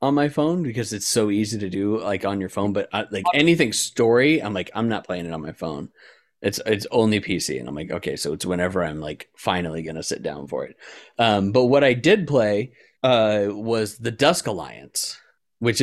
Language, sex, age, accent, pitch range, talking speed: English, male, 30-49, American, 100-145 Hz, 225 wpm